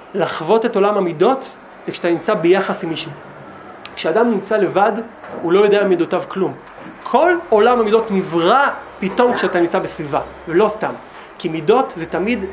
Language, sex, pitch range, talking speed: Hebrew, male, 180-225 Hz, 160 wpm